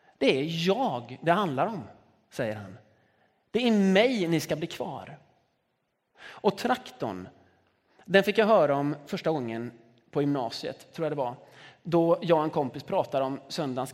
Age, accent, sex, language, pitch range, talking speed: 30-49, native, male, Swedish, 140-185 Hz, 165 wpm